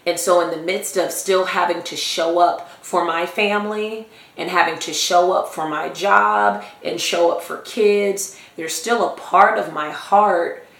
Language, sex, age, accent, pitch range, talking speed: English, female, 30-49, American, 170-205 Hz, 190 wpm